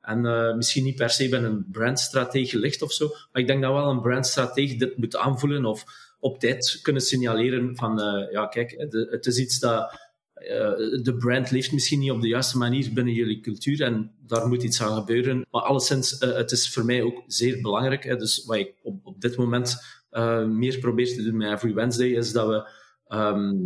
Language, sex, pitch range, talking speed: Dutch, male, 115-130 Hz, 215 wpm